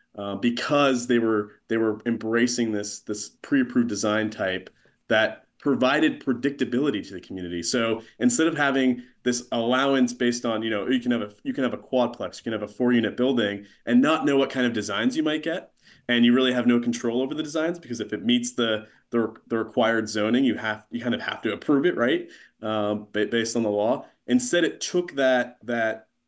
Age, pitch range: 30-49, 105-130 Hz